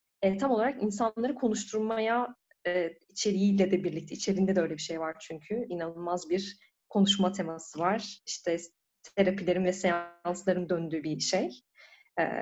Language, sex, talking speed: Turkish, female, 140 wpm